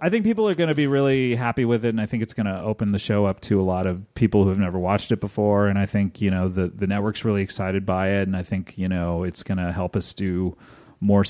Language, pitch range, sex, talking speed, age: English, 100-125 Hz, male, 295 wpm, 30-49